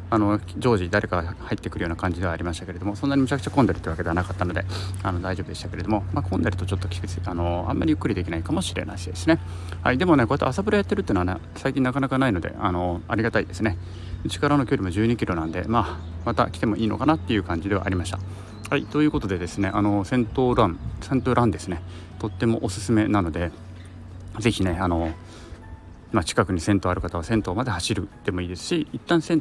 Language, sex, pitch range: Japanese, male, 90-115 Hz